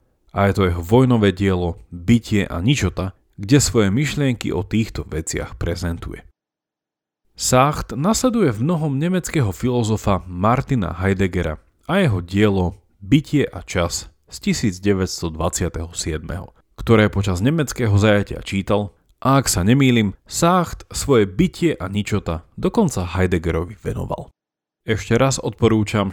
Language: Slovak